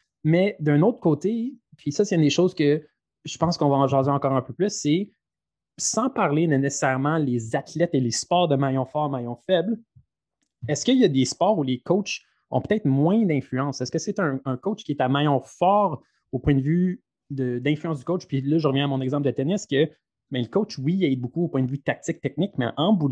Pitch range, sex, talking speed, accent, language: 130-170 Hz, male, 235 wpm, Canadian, French